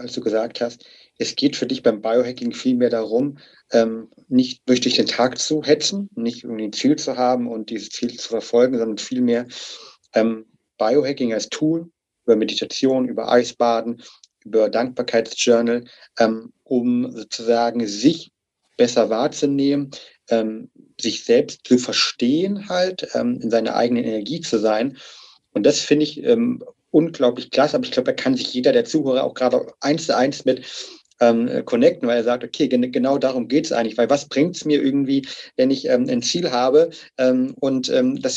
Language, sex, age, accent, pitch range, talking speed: German, male, 40-59, German, 120-165 Hz, 175 wpm